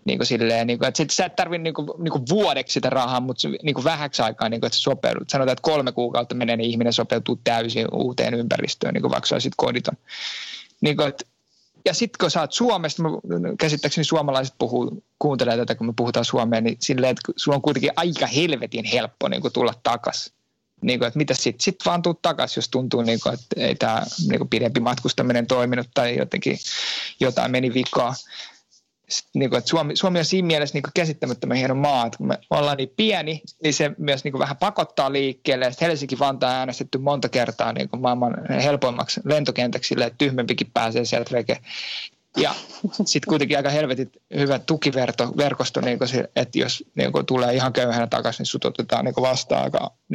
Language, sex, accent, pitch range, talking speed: Finnish, male, native, 120-155 Hz, 180 wpm